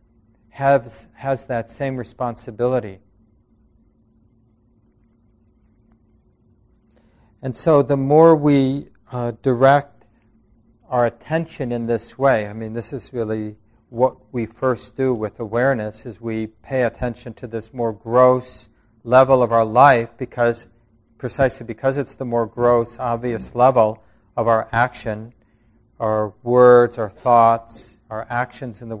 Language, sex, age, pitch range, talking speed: English, male, 40-59, 115-130 Hz, 125 wpm